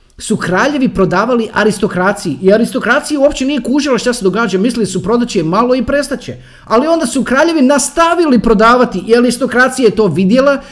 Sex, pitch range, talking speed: male, 200-275 Hz, 160 wpm